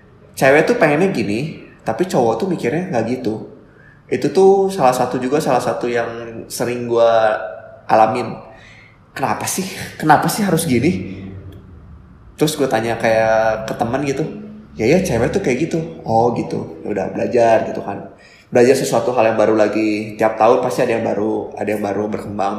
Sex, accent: male, native